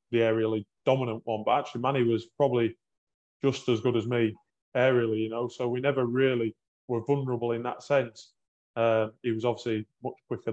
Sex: male